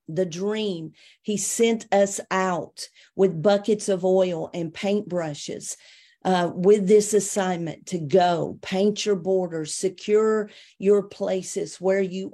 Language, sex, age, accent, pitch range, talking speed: English, female, 50-69, American, 180-200 Hz, 130 wpm